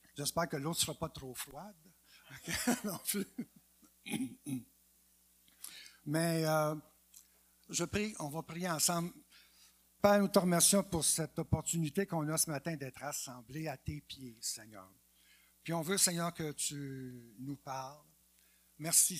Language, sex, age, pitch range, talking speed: French, male, 60-79, 125-165 Hz, 140 wpm